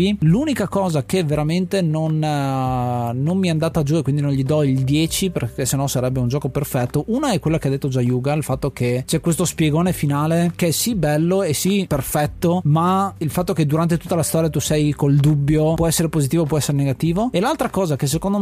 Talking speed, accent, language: 225 wpm, native, Italian